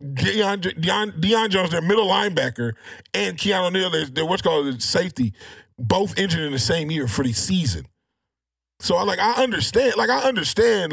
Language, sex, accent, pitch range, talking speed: English, male, American, 140-190 Hz, 175 wpm